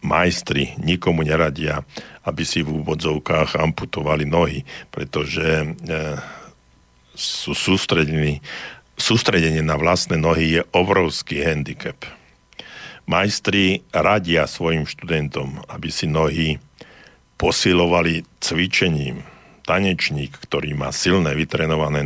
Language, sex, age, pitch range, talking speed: Slovak, male, 50-69, 75-95 Hz, 90 wpm